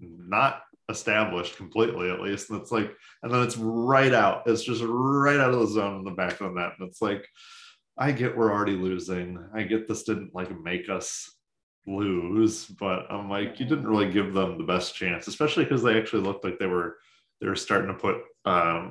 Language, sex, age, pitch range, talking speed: English, male, 20-39, 95-125 Hz, 210 wpm